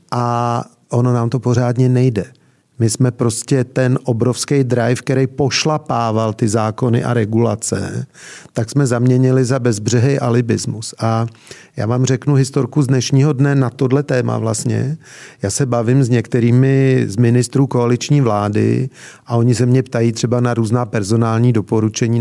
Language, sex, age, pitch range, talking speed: Czech, male, 40-59, 120-140 Hz, 150 wpm